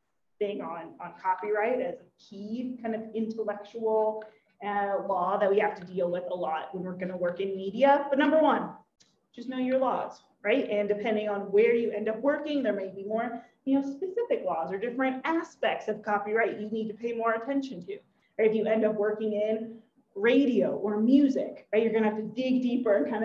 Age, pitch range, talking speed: 30-49, 210-265 Hz, 215 wpm